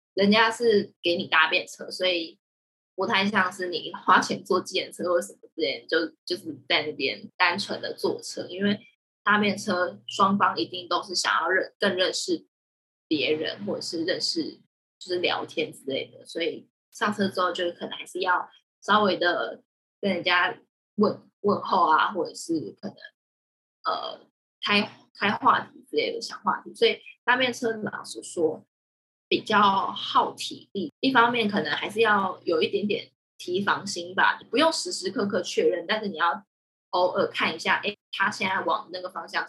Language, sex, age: Chinese, female, 20-39